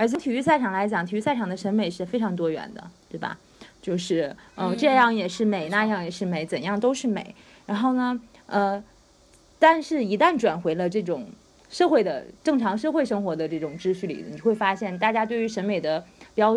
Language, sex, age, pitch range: Chinese, female, 30-49, 180-230 Hz